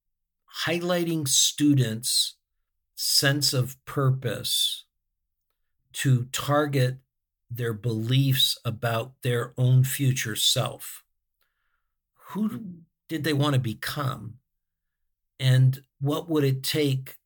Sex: male